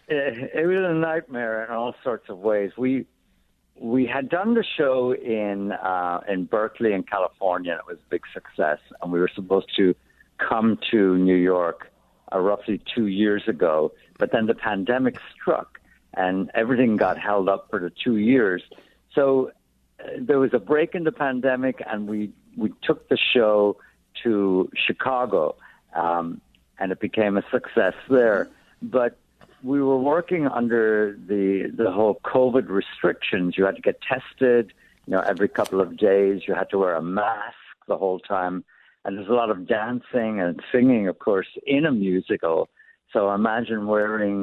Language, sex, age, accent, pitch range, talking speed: English, male, 60-79, American, 95-125 Hz, 170 wpm